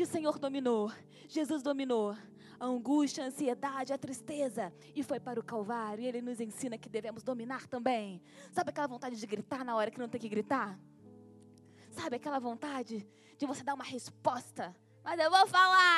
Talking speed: 180 wpm